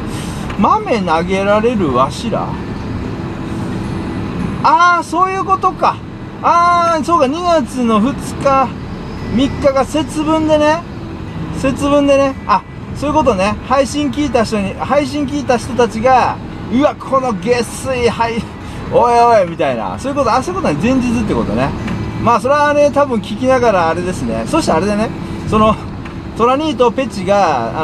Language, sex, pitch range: Japanese, male, 180-270 Hz